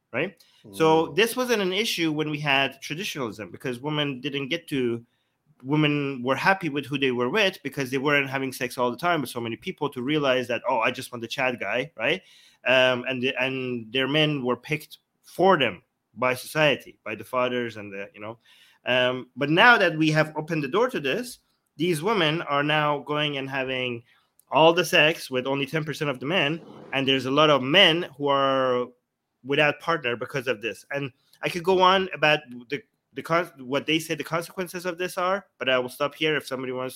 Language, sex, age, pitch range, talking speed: English, male, 30-49, 125-155 Hz, 210 wpm